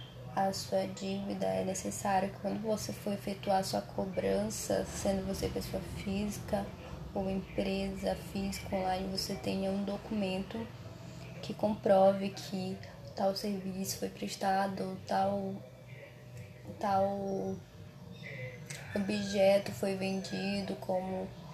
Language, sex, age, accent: Portuguese, female, 10-29, Brazilian